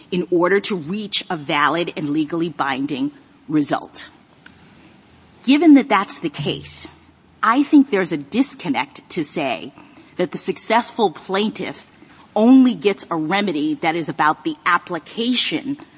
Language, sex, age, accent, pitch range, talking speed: English, female, 30-49, American, 175-240 Hz, 130 wpm